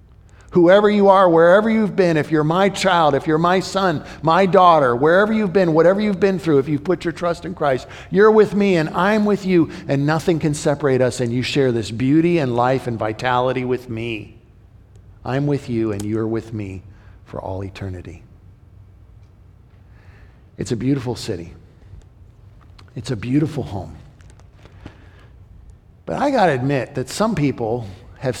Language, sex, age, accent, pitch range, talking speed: English, male, 50-69, American, 110-185 Hz, 165 wpm